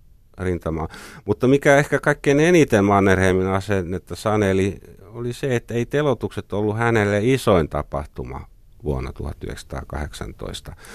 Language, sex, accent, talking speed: Finnish, male, native, 115 wpm